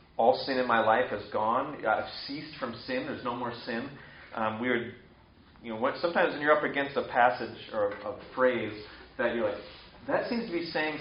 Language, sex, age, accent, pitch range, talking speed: English, male, 30-49, American, 110-135 Hz, 205 wpm